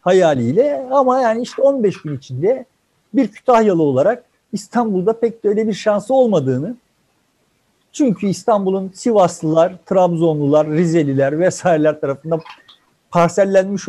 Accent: native